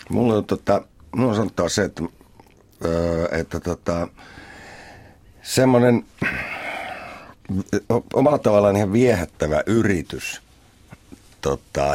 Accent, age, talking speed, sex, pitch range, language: native, 60-79, 75 wpm, male, 75-100 Hz, Finnish